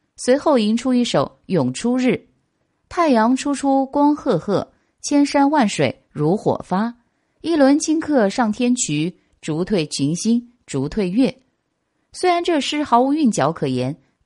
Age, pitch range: 20-39, 185-275 Hz